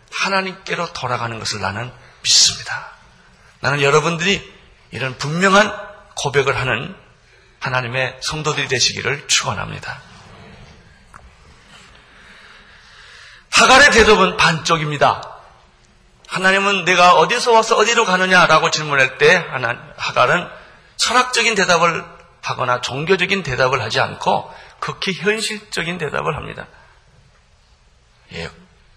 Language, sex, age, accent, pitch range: Korean, male, 40-59, native, 130-200 Hz